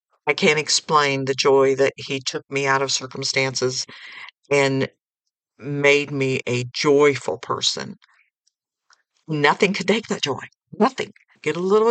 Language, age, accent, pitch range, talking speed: English, 60-79, American, 135-185 Hz, 135 wpm